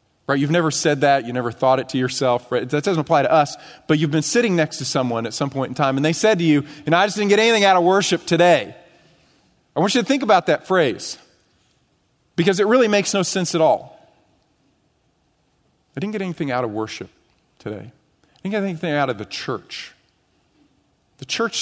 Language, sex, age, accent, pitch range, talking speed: English, male, 40-59, American, 125-170 Hz, 220 wpm